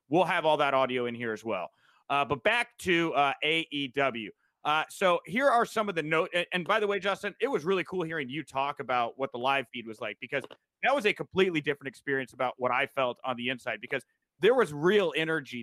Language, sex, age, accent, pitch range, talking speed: English, male, 30-49, American, 130-180 Hz, 240 wpm